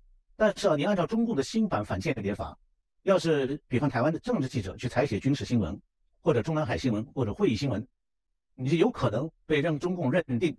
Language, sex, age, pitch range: Chinese, male, 60-79, 100-165 Hz